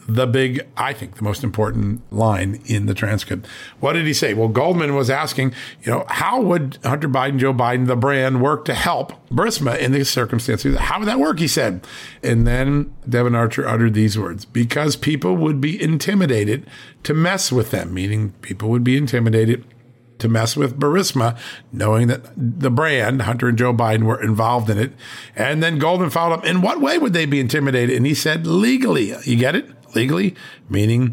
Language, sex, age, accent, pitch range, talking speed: English, male, 50-69, American, 110-135 Hz, 195 wpm